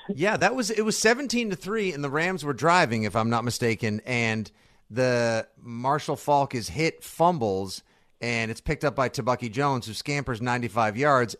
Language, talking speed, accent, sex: English, 185 wpm, American, male